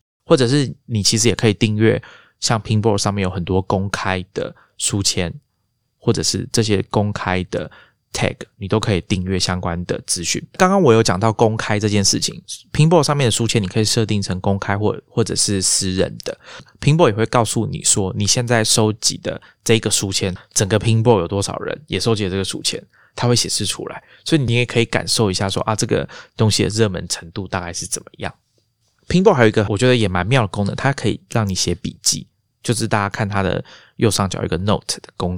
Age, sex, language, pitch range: 20-39, male, Chinese, 95-115 Hz